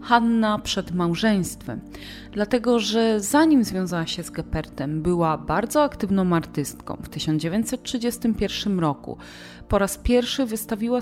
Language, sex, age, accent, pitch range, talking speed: Polish, female, 30-49, native, 175-250 Hz, 115 wpm